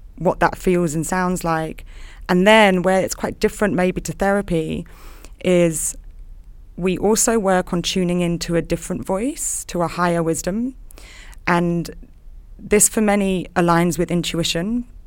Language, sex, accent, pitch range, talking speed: English, female, British, 165-185 Hz, 145 wpm